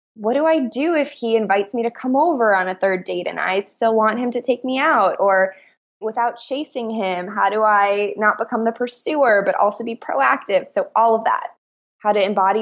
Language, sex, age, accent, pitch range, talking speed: English, female, 20-39, American, 190-235 Hz, 220 wpm